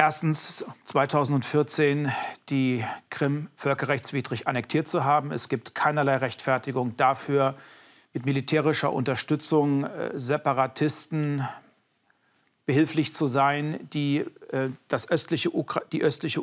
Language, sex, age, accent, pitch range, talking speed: German, male, 40-59, German, 135-155 Hz, 95 wpm